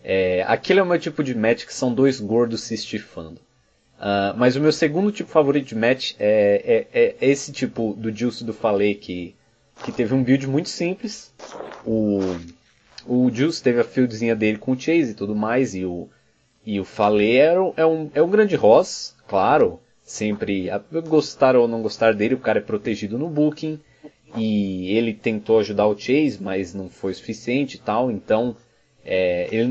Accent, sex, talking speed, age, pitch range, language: Brazilian, male, 190 wpm, 20-39, 105-135 Hz, Portuguese